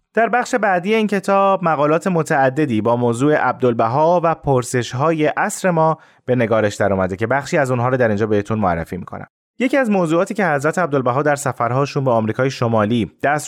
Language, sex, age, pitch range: Persian, male, 30-49, 115-160 Hz